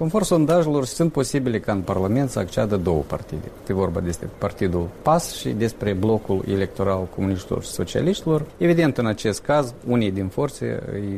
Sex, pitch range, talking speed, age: male, 100-145 Hz, 165 wpm, 50-69